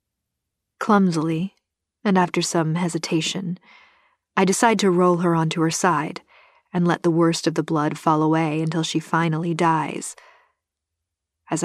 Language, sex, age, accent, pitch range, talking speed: English, female, 40-59, American, 160-195 Hz, 140 wpm